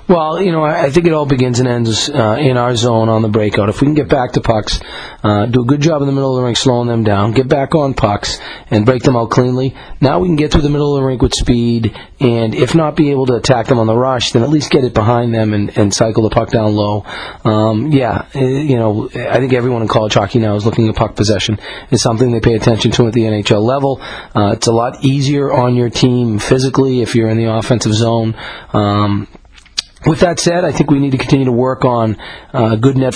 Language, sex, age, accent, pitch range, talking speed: English, male, 30-49, American, 110-135 Hz, 255 wpm